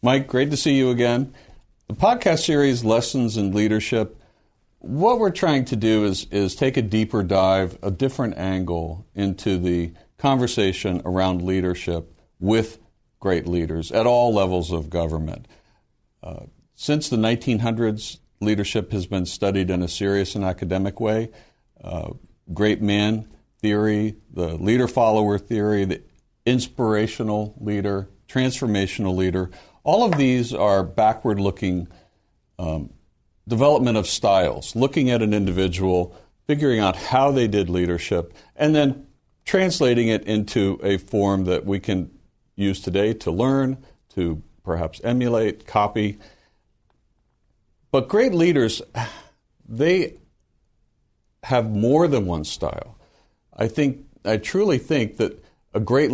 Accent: American